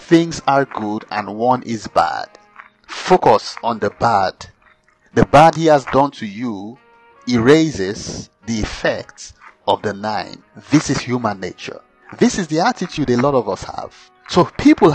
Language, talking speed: English, 155 wpm